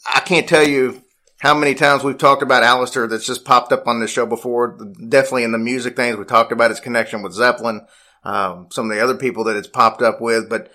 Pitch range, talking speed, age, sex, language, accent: 115-140 Hz, 240 wpm, 40-59, male, English, American